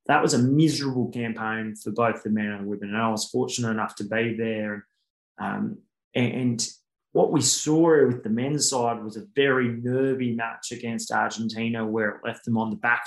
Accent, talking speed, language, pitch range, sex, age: Australian, 195 wpm, English, 115-135 Hz, male, 20-39